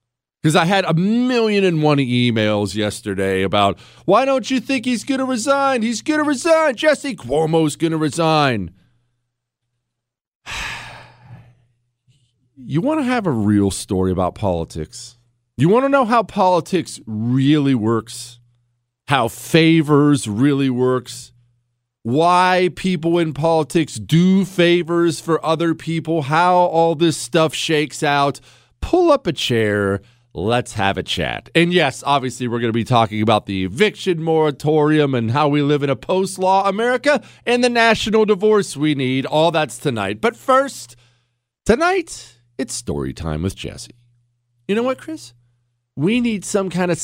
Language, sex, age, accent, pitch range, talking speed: English, male, 40-59, American, 120-200 Hz, 145 wpm